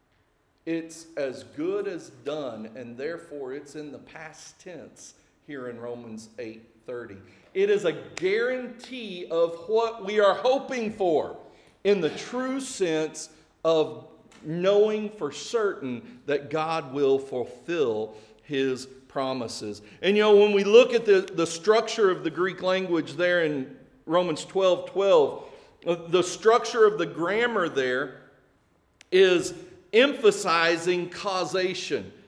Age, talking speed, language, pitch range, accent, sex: 40-59, 130 wpm, English, 155-225 Hz, American, male